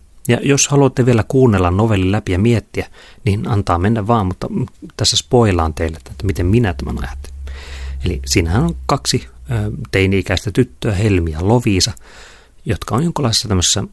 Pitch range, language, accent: 90-115 Hz, Finnish, native